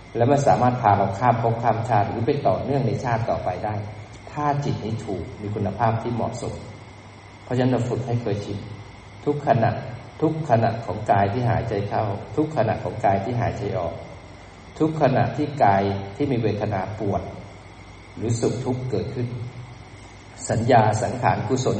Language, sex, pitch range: Thai, male, 105-130 Hz